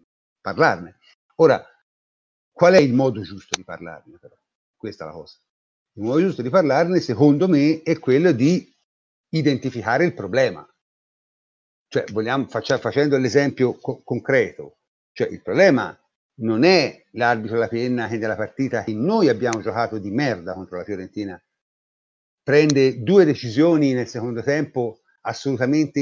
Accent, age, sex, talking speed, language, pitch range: native, 50-69, male, 140 wpm, Italian, 115-145 Hz